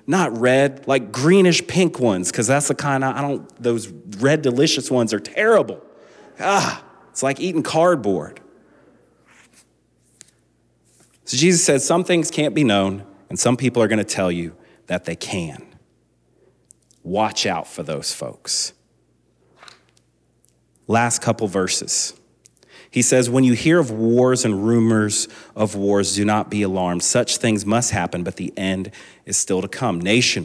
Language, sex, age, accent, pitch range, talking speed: English, male, 30-49, American, 100-130 Hz, 150 wpm